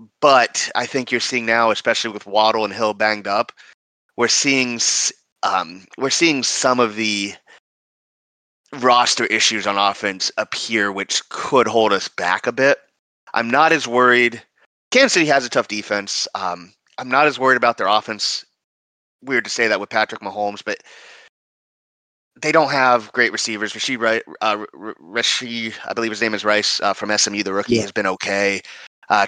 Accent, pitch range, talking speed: American, 100-125 Hz, 160 wpm